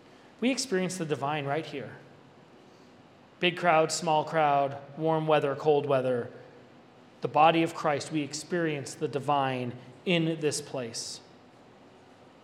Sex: male